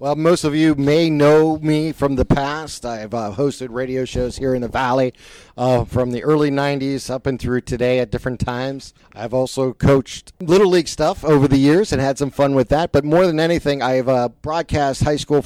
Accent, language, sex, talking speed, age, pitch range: American, English, male, 215 wpm, 40-59, 130-155 Hz